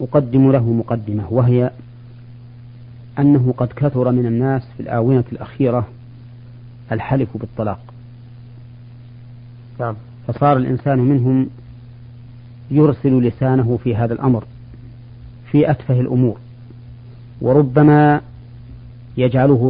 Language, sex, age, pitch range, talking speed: Arabic, male, 40-59, 120-130 Hz, 80 wpm